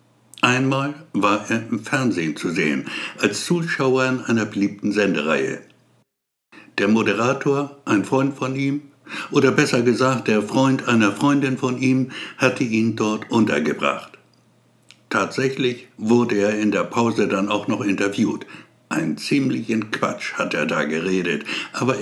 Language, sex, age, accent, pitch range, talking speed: German, male, 60-79, German, 110-135 Hz, 135 wpm